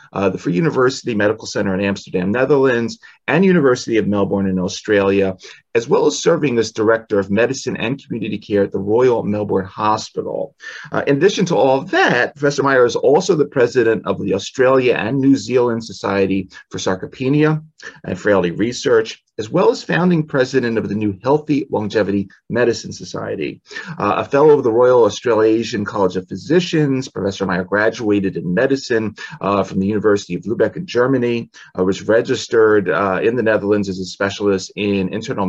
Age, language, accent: 30-49, English, American